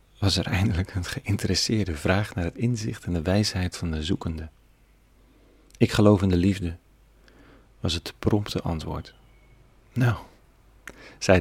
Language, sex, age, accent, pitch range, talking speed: Dutch, male, 40-59, Dutch, 85-105 Hz, 135 wpm